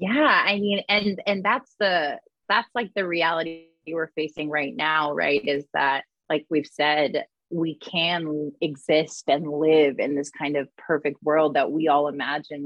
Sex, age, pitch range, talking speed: female, 20-39, 145-165 Hz, 170 wpm